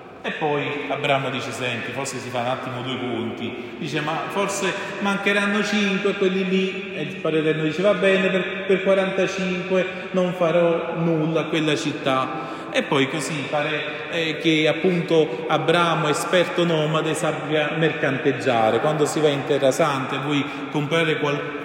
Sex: male